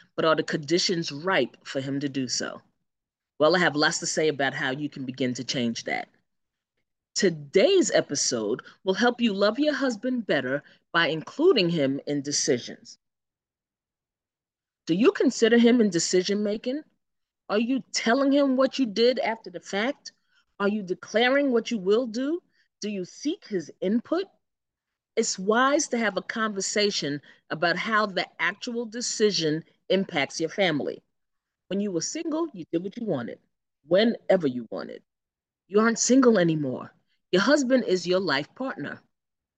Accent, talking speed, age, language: American, 155 wpm, 30-49, English